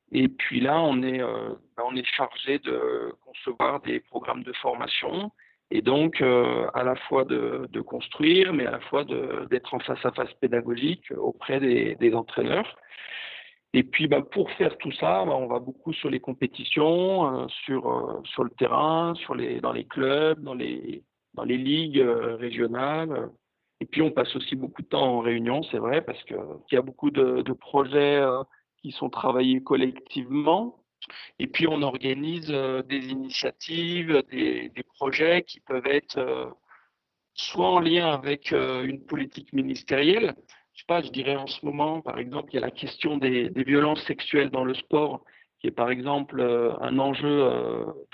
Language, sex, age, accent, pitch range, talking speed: French, male, 50-69, French, 125-160 Hz, 185 wpm